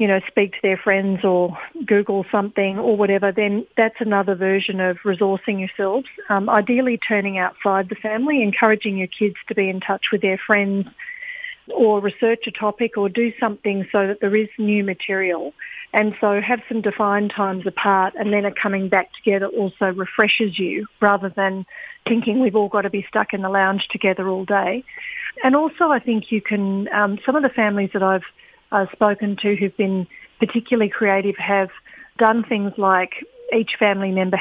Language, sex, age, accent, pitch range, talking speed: English, female, 40-59, Australian, 195-220 Hz, 180 wpm